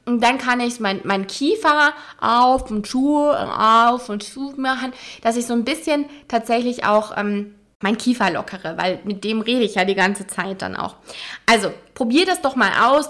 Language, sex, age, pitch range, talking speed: German, female, 20-39, 200-245 Hz, 180 wpm